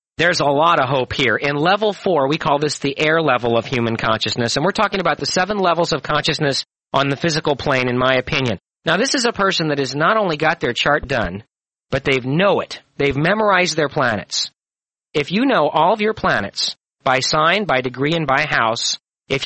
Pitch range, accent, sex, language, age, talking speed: 130-180 Hz, American, male, English, 40-59, 215 wpm